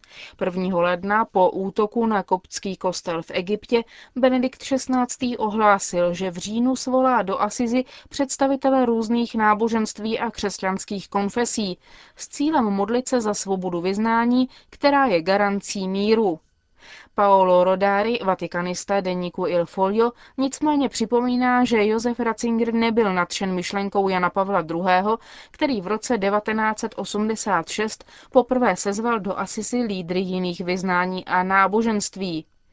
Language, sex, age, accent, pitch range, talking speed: Czech, female, 20-39, native, 185-235 Hz, 120 wpm